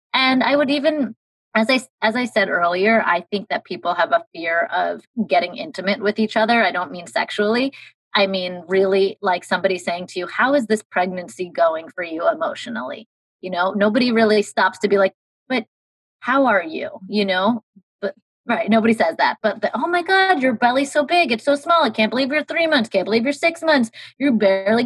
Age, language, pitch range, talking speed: 30-49, English, 185-240 Hz, 205 wpm